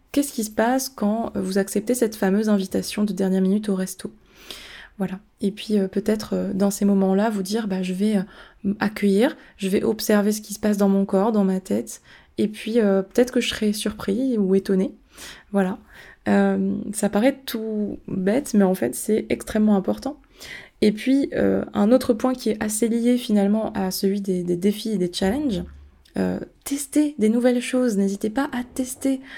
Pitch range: 195-235 Hz